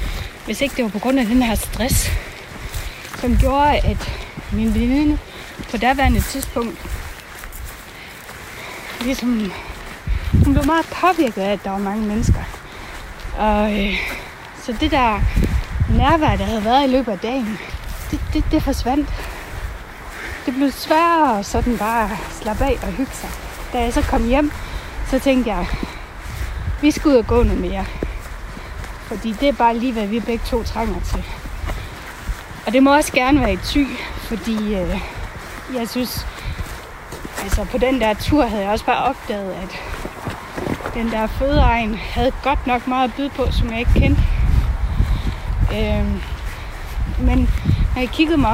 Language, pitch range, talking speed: Danish, 205-270 Hz, 155 wpm